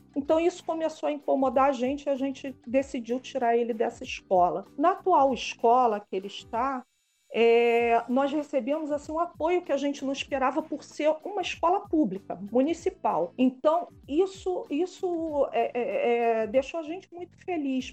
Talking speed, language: 165 wpm, Portuguese